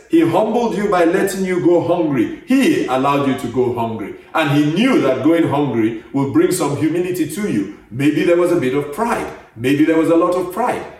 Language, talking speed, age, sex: English, 220 wpm, 50-69, male